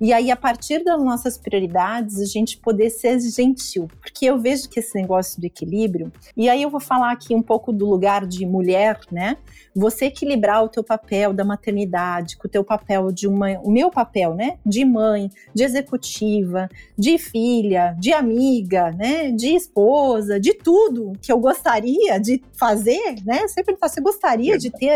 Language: Portuguese